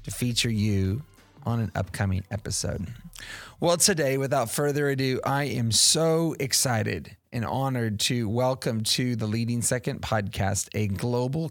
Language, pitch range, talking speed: English, 105-130 Hz, 140 wpm